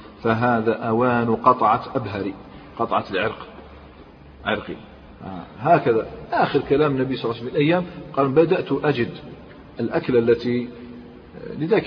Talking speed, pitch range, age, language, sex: 105 wpm, 115-150 Hz, 40-59, Arabic, male